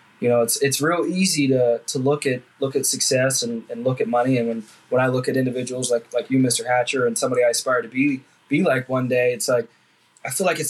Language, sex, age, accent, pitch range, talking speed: English, male, 20-39, American, 130-155 Hz, 260 wpm